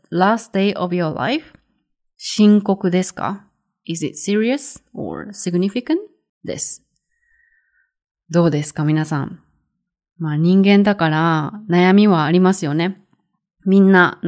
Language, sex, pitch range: English, female, 160-205 Hz